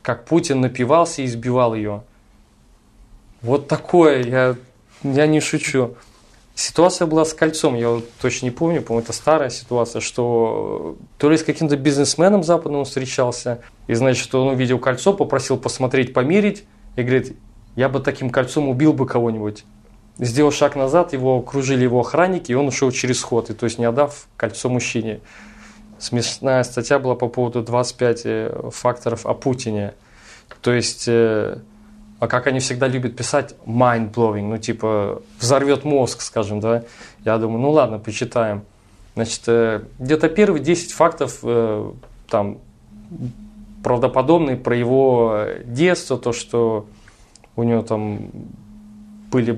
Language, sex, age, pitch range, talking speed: Russian, male, 20-39, 115-140 Hz, 145 wpm